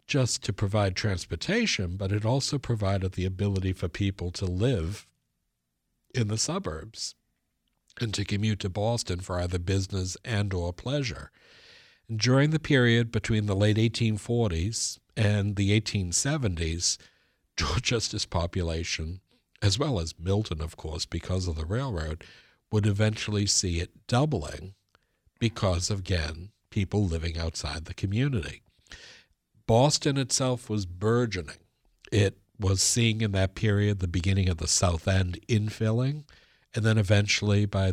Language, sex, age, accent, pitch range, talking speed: English, male, 60-79, American, 90-115 Hz, 130 wpm